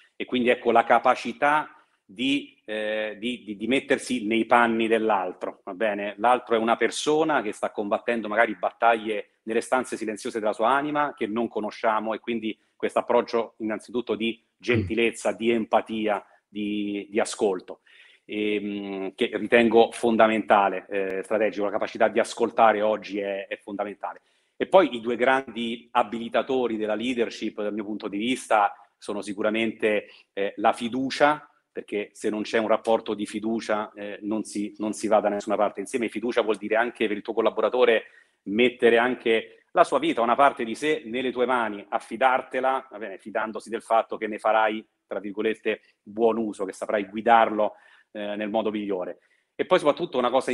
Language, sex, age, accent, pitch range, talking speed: Italian, male, 40-59, native, 105-120 Hz, 165 wpm